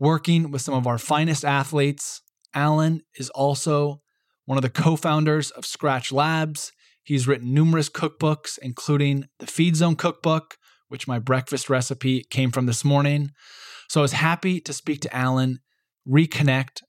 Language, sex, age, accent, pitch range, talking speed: English, male, 20-39, American, 130-155 Hz, 155 wpm